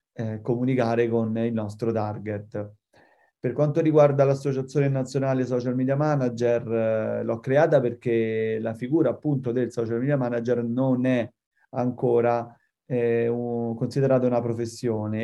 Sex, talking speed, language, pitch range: male, 130 wpm, Italian, 115-130 Hz